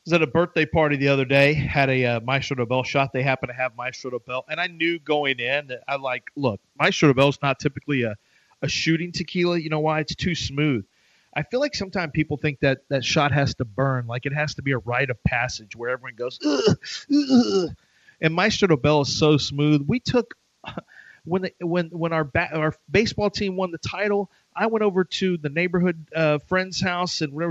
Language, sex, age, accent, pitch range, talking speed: English, male, 40-59, American, 135-170 Hz, 235 wpm